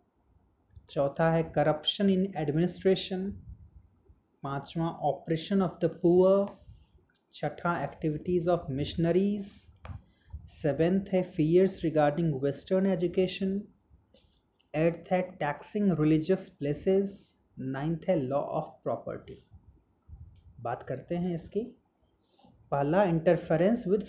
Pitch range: 145-190 Hz